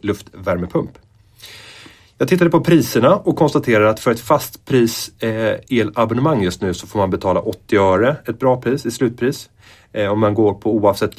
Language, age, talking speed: Swedish, 30-49, 165 wpm